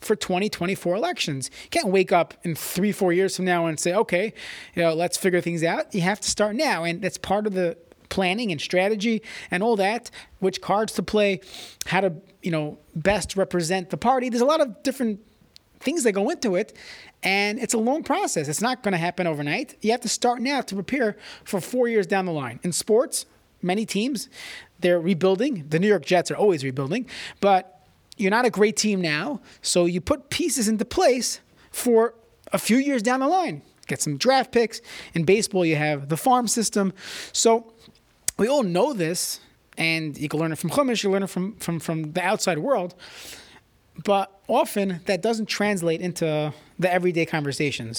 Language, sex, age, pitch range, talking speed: English, male, 30-49, 170-225 Hz, 200 wpm